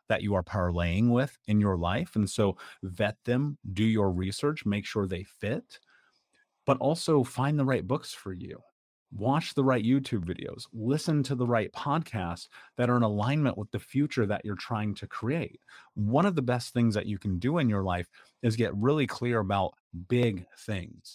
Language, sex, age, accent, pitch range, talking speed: English, male, 30-49, American, 100-125 Hz, 195 wpm